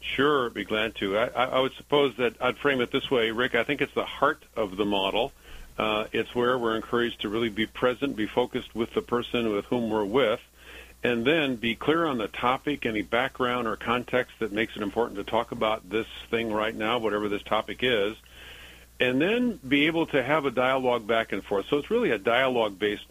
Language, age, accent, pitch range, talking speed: English, 50-69, American, 110-130 Hz, 220 wpm